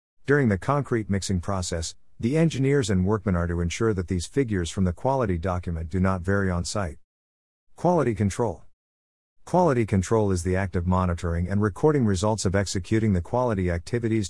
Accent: American